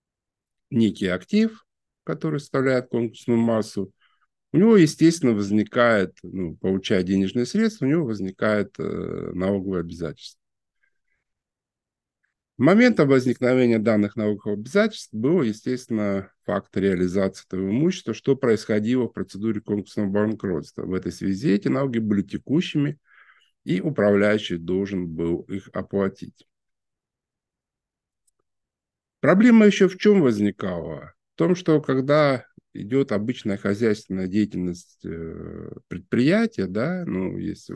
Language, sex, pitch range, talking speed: Russian, male, 100-155 Hz, 105 wpm